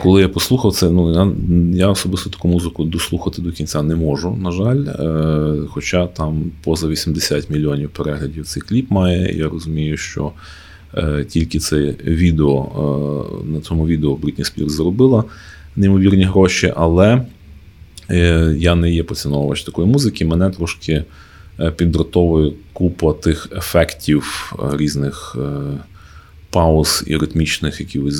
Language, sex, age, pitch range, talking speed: Ukrainian, male, 30-49, 75-90 Hz, 140 wpm